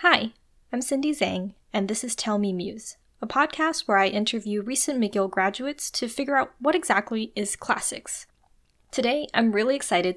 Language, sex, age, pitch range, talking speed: English, female, 20-39, 190-245 Hz, 170 wpm